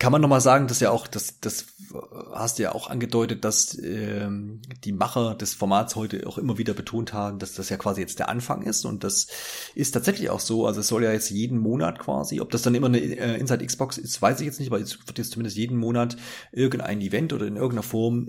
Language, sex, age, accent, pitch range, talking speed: German, male, 30-49, German, 105-130 Hz, 240 wpm